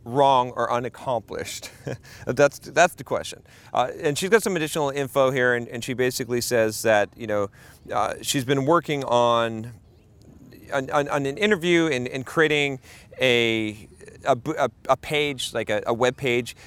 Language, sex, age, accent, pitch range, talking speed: English, male, 40-59, American, 110-135 Hz, 160 wpm